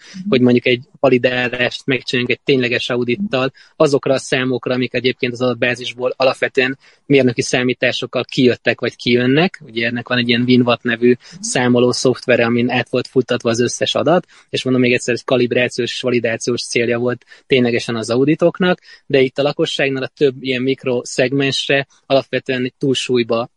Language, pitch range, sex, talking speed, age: Hungarian, 125-145 Hz, male, 150 wpm, 20-39